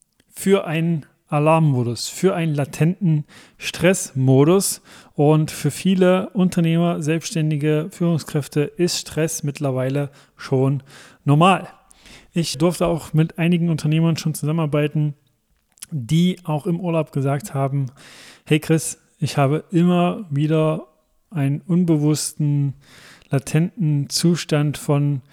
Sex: male